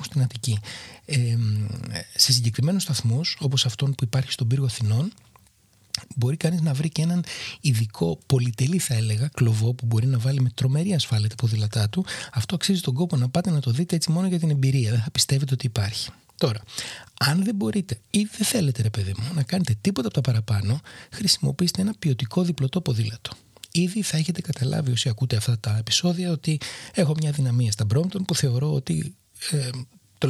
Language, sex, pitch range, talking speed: Greek, male, 115-160 Hz, 180 wpm